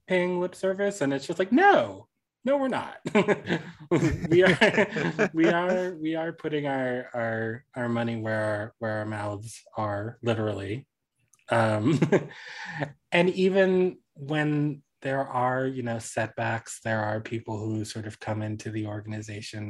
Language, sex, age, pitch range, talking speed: English, male, 20-39, 110-150 Hz, 145 wpm